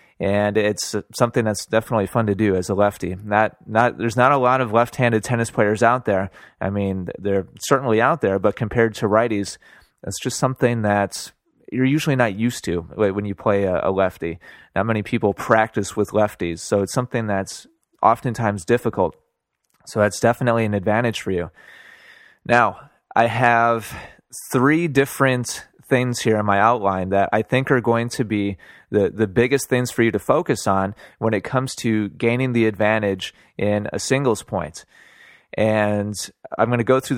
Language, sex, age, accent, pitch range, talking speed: English, male, 30-49, American, 105-120 Hz, 180 wpm